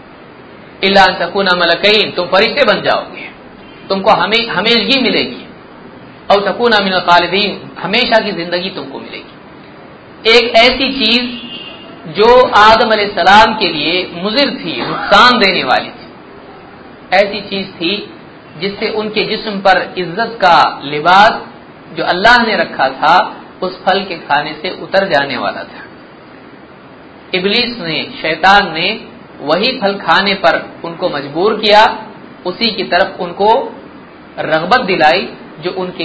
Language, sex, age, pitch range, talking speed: Hindi, male, 50-69, 175-220 Hz, 125 wpm